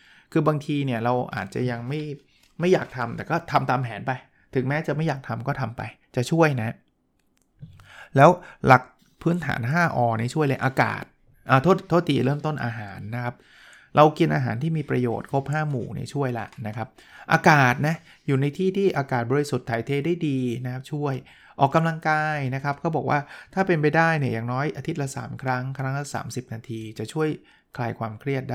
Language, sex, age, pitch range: Thai, male, 20-39, 120-150 Hz